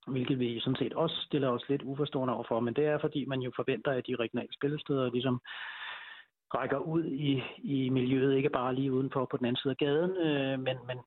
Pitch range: 120-140 Hz